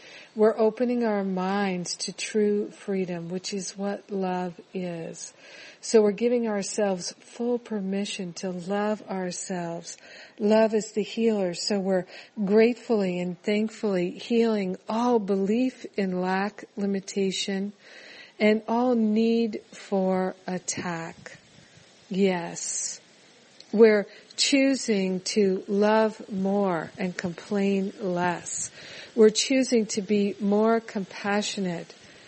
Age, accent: 50-69, American